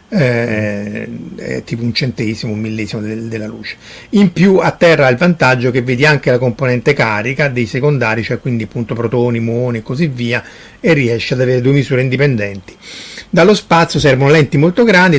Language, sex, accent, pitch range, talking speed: Italian, male, native, 125-150 Hz, 180 wpm